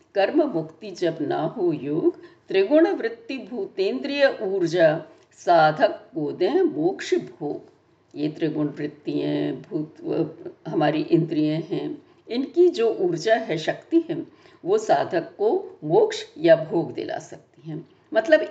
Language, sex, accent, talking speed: Hindi, female, native, 125 wpm